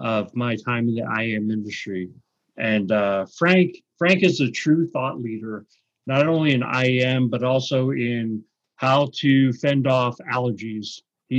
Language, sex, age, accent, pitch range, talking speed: English, male, 40-59, American, 115-135 Hz, 155 wpm